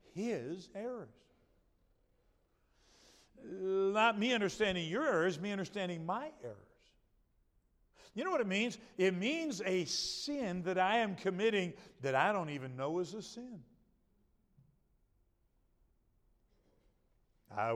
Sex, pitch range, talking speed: male, 130-185 Hz, 110 wpm